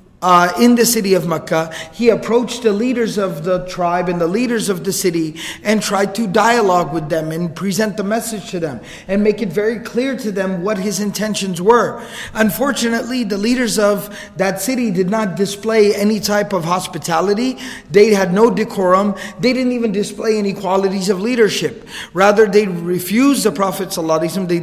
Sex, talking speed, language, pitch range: male, 180 wpm, English, 185-225 Hz